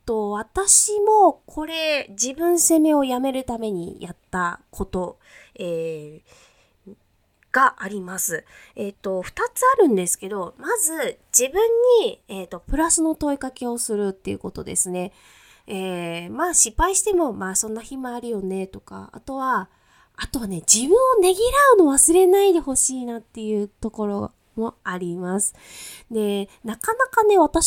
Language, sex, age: Japanese, female, 20-39